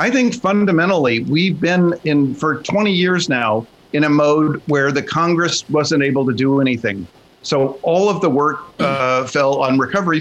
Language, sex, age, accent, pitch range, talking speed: English, male, 50-69, American, 130-170 Hz, 175 wpm